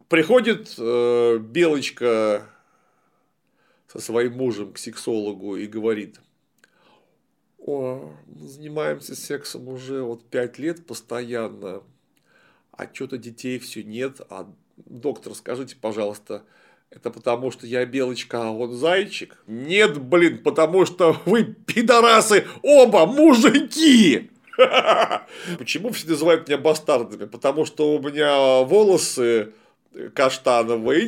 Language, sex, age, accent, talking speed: Russian, male, 40-59, native, 100 wpm